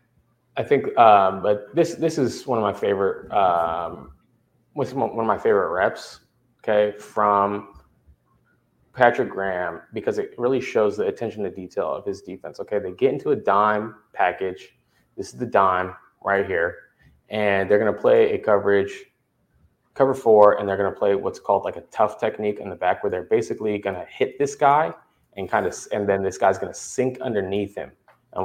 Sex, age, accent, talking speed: male, 20-39, American, 180 wpm